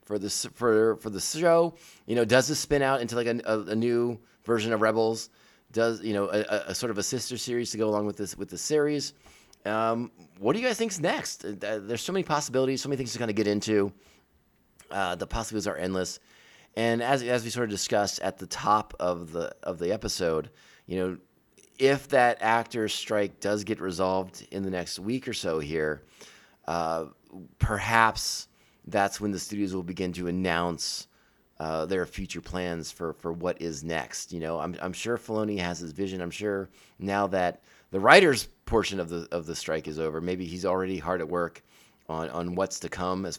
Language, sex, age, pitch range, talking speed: English, male, 30-49, 85-115 Hz, 205 wpm